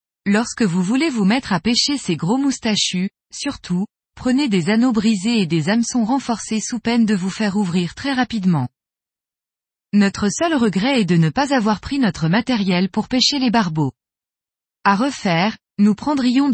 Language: French